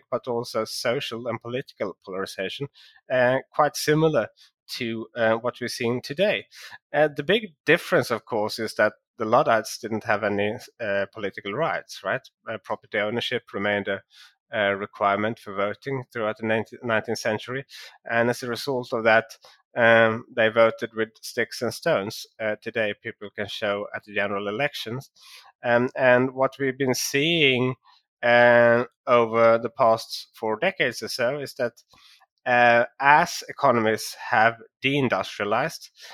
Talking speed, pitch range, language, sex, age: 150 wpm, 105-125 Hz, English, male, 30-49